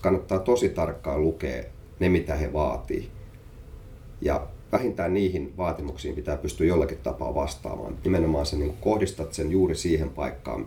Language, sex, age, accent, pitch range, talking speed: Finnish, male, 30-49, native, 75-95 Hz, 140 wpm